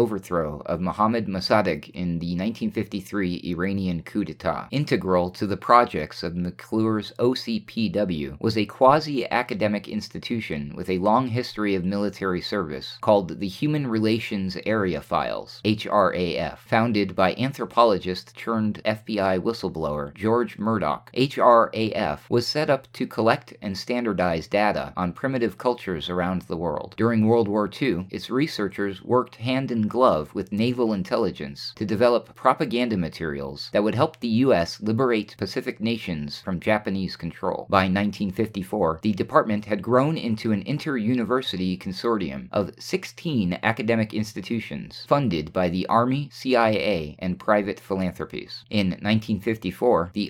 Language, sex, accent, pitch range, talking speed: English, male, American, 95-115 Hz, 130 wpm